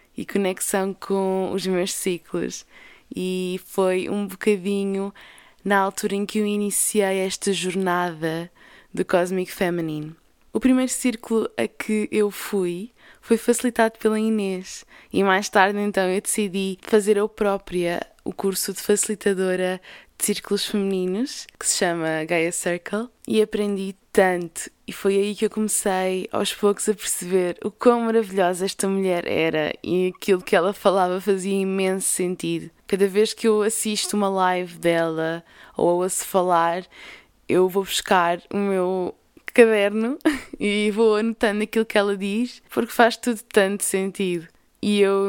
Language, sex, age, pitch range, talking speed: Portuguese, female, 20-39, 185-210 Hz, 145 wpm